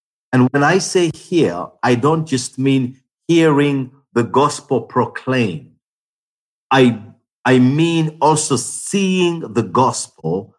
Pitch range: 120-150 Hz